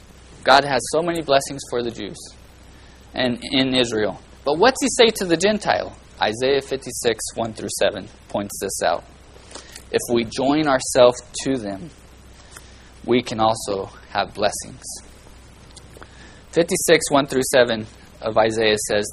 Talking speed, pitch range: 140 wpm, 120-195 Hz